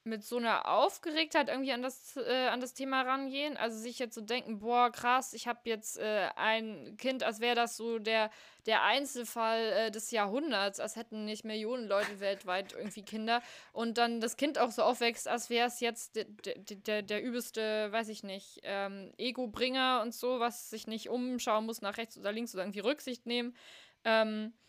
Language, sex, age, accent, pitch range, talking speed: German, female, 20-39, German, 210-245 Hz, 195 wpm